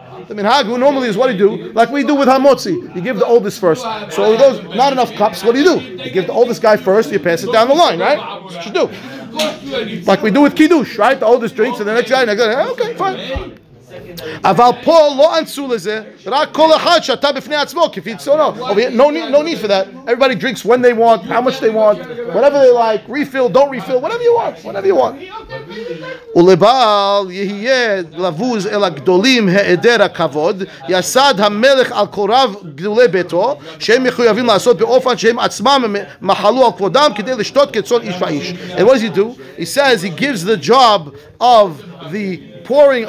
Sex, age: male, 30-49